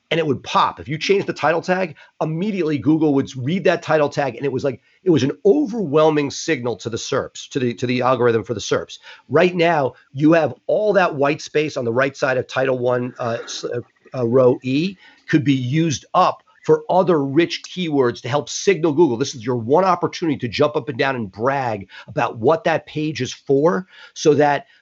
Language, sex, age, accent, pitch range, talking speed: English, male, 40-59, American, 130-165 Hz, 210 wpm